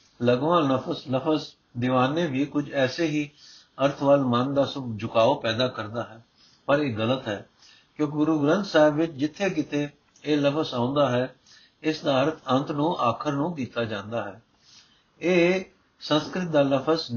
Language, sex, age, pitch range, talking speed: Punjabi, male, 60-79, 120-150 Hz, 155 wpm